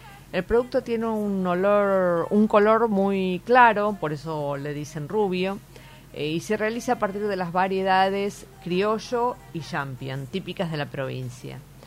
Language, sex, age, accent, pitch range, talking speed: Spanish, female, 40-59, Argentinian, 145-195 Hz, 145 wpm